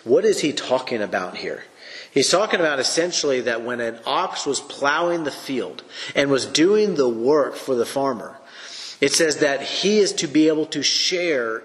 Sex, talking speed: male, 185 wpm